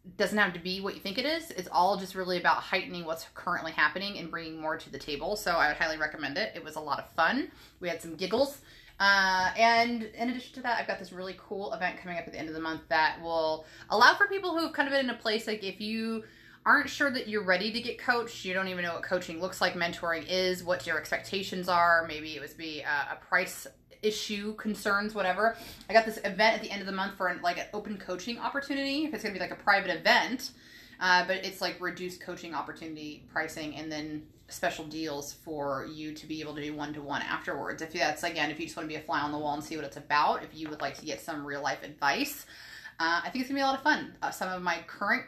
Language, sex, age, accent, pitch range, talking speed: English, female, 30-49, American, 160-215 Hz, 260 wpm